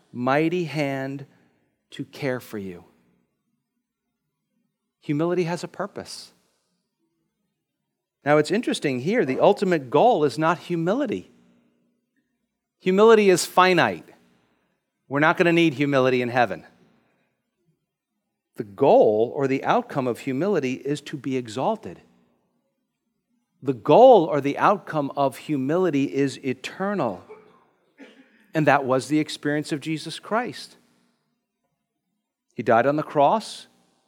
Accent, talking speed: American, 115 wpm